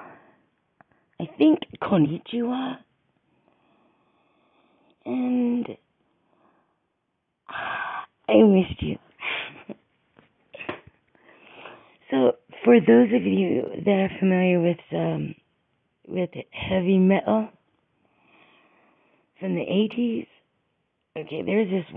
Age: 40-59